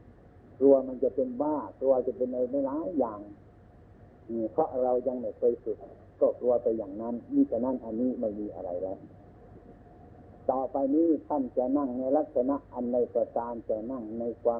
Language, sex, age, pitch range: Thai, male, 60-79, 105-145 Hz